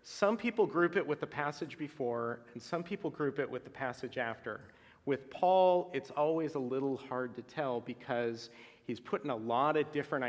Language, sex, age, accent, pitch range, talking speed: English, male, 40-59, American, 120-155 Hz, 190 wpm